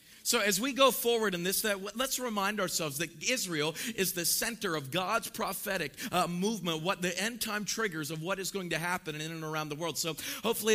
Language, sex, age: English, male, 40-59